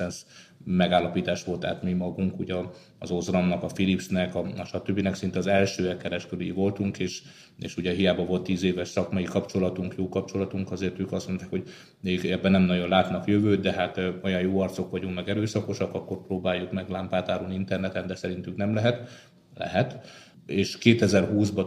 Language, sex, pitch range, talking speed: Hungarian, male, 90-100 Hz, 165 wpm